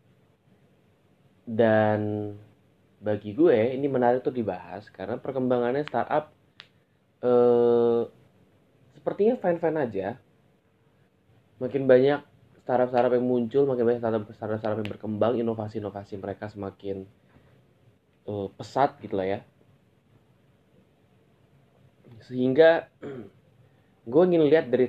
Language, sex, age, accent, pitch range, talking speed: Indonesian, male, 20-39, native, 100-125 Hz, 90 wpm